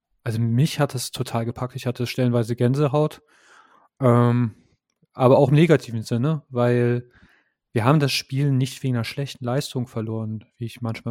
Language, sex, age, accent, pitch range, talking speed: German, male, 30-49, German, 120-140 Hz, 160 wpm